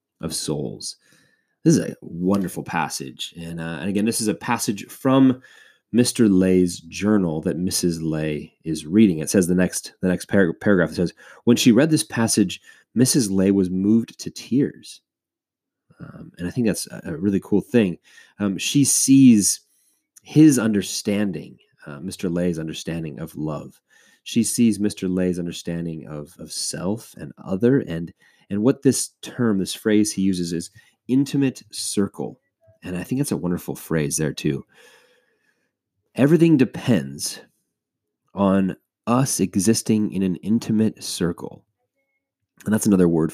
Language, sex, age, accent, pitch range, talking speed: English, male, 30-49, American, 85-110 Hz, 150 wpm